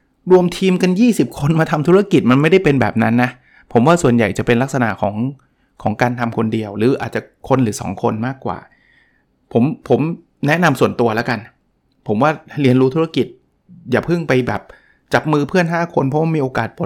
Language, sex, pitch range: Thai, male, 115-140 Hz